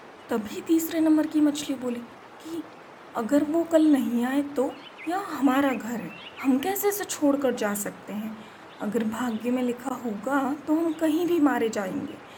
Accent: native